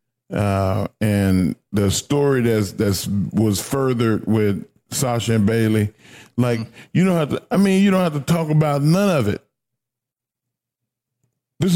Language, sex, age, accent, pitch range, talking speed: English, male, 40-59, American, 115-160 Hz, 150 wpm